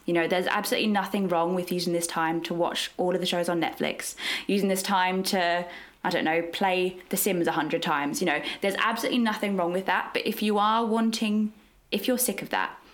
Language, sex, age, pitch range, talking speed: English, female, 20-39, 170-210 Hz, 225 wpm